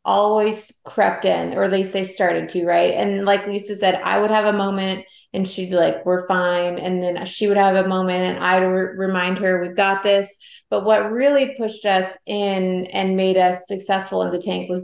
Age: 30-49